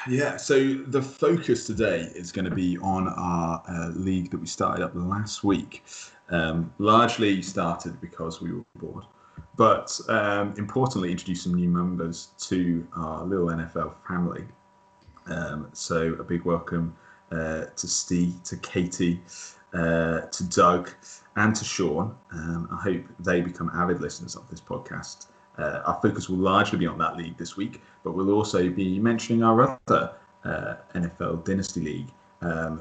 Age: 30-49